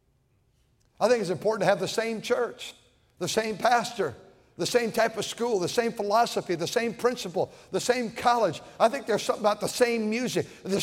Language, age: English, 60-79